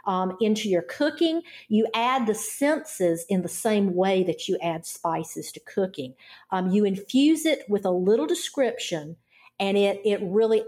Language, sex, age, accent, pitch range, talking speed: English, female, 50-69, American, 180-230 Hz, 170 wpm